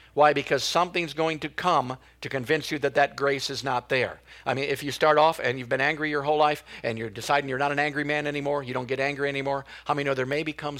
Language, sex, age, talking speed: English, male, 50-69, 280 wpm